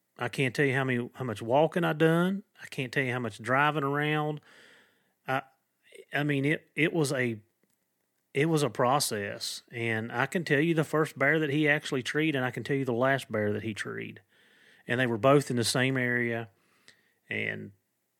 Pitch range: 115-145 Hz